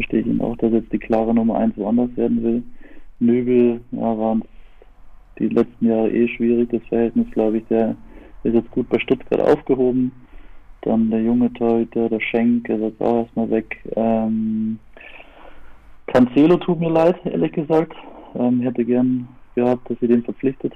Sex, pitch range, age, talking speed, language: male, 115-125 Hz, 20-39, 170 wpm, German